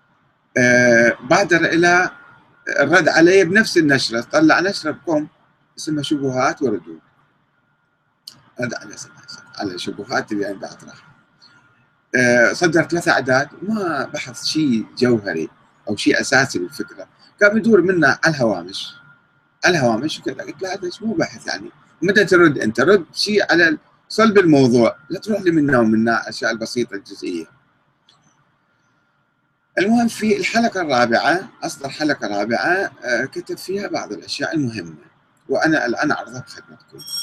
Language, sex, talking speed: Arabic, male, 125 wpm